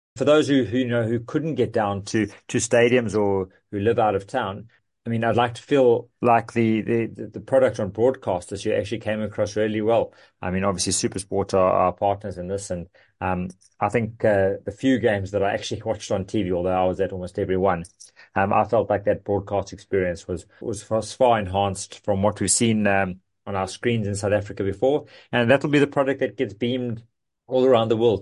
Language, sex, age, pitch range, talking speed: English, male, 30-49, 95-120 Hz, 220 wpm